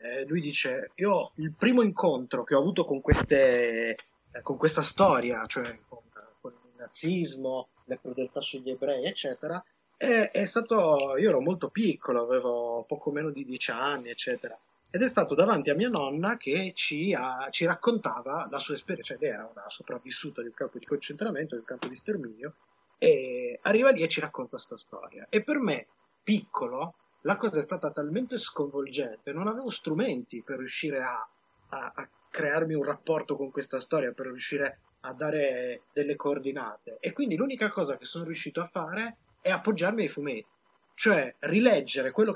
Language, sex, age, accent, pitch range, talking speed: Italian, male, 20-39, native, 140-205 Hz, 175 wpm